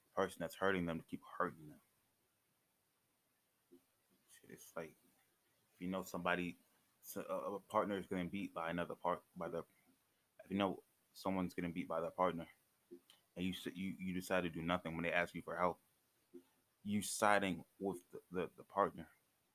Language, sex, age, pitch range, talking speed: English, male, 20-39, 90-105 Hz, 165 wpm